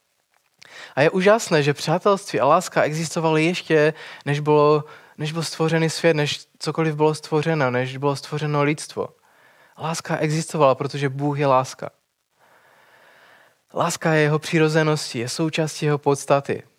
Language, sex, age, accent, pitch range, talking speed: Czech, male, 20-39, native, 140-170 Hz, 130 wpm